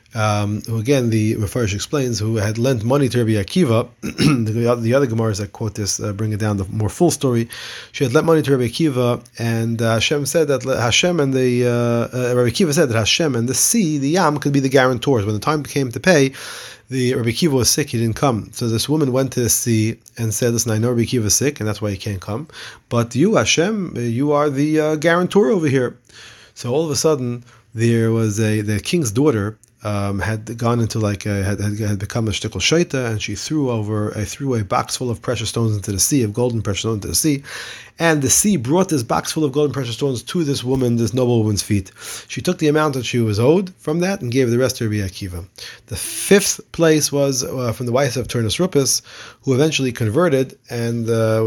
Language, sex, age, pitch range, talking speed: English, male, 30-49, 110-140 Hz, 235 wpm